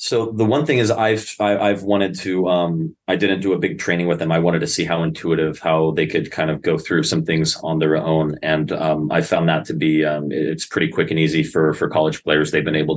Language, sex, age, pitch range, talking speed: English, male, 30-49, 80-95 Hz, 265 wpm